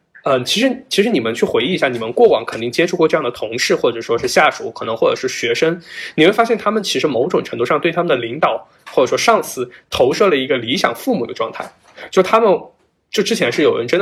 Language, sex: Chinese, male